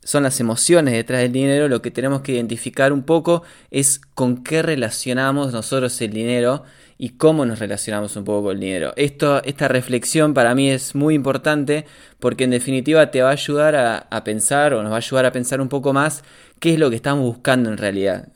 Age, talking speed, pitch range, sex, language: 20-39, 215 wpm, 110-140 Hz, male, Spanish